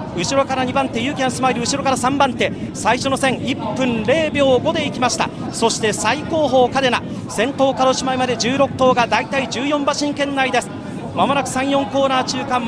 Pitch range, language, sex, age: 260-315 Hz, Japanese, male, 40-59